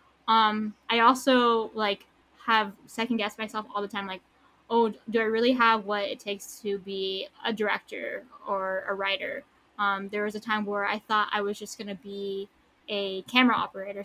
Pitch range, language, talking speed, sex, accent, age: 200-230 Hz, English, 190 wpm, female, American, 10-29